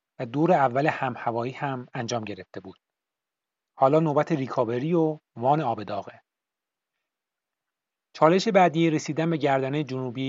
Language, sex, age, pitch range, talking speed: Persian, male, 30-49, 125-155 Hz, 120 wpm